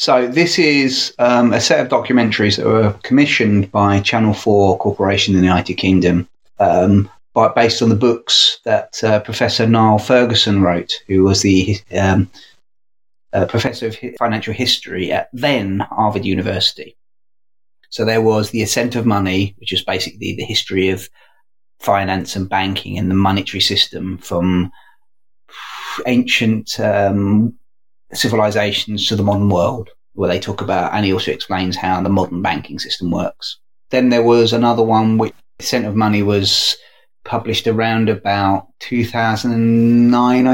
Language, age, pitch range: English, 30-49, 100-120 Hz